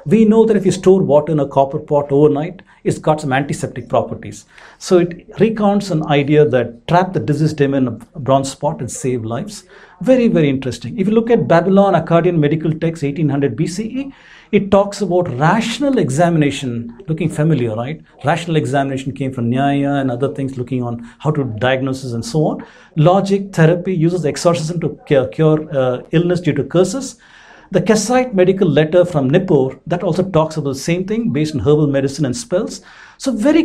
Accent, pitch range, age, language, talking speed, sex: Indian, 135-185 Hz, 50-69, English, 185 wpm, male